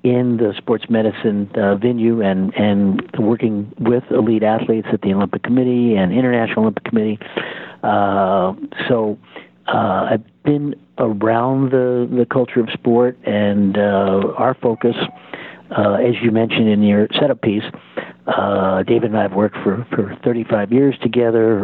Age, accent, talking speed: 50-69, American, 150 wpm